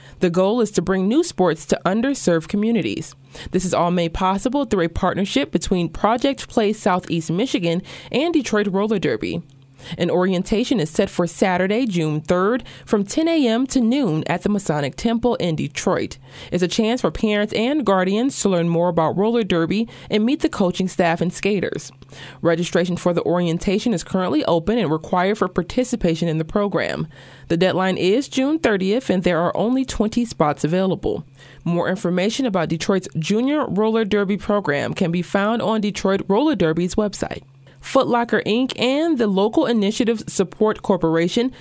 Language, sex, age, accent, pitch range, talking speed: English, female, 20-39, American, 170-225 Hz, 170 wpm